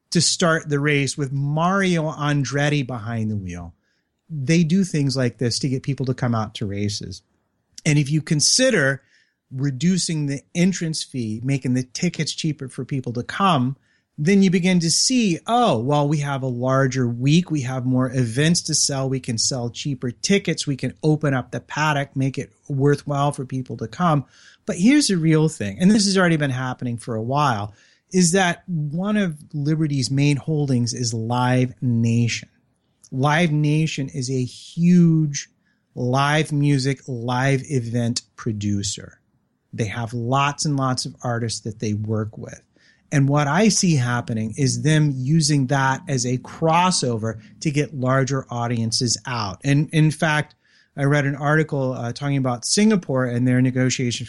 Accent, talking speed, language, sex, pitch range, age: American, 165 wpm, English, male, 120-155 Hz, 30-49